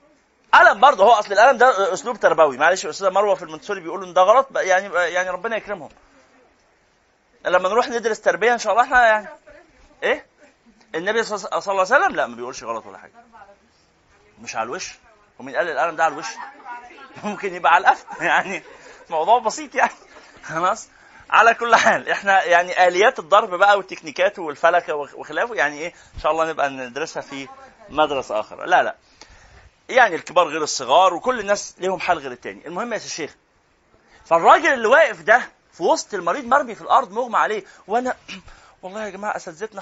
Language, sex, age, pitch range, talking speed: Arabic, male, 30-49, 185-265 Hz, 170 wpm